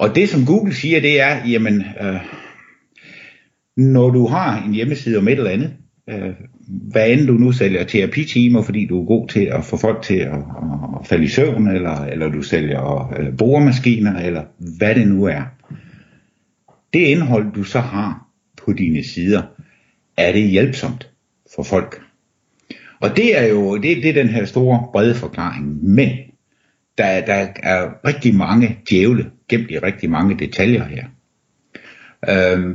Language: Danish